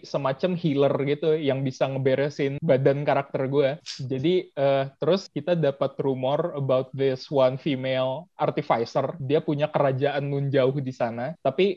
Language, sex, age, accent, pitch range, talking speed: Indonesian, male, 20-39, native, 140-165 Hz, 145 wpm